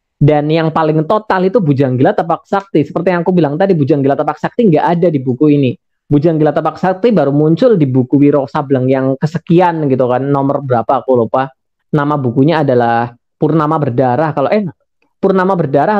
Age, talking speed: 20-39, 185 wpm